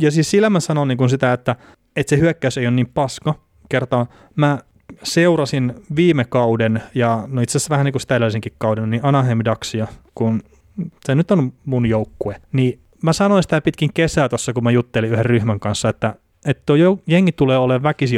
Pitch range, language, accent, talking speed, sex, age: 115-150 Hz, Finnish, native, 190 wpm, male, 30-49